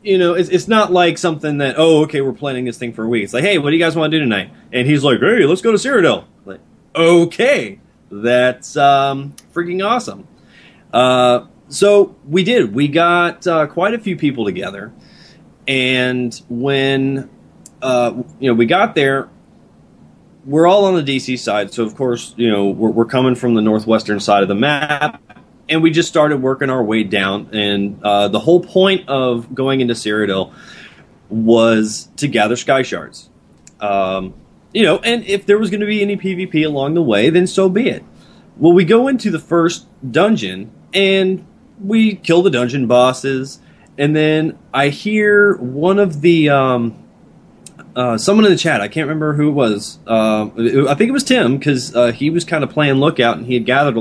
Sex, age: male, 30-49